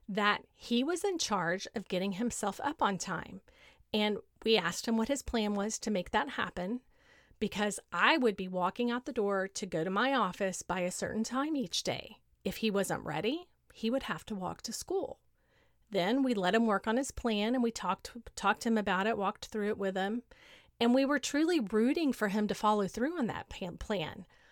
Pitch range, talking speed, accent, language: 200-245 Hz, 215 wpm, American, English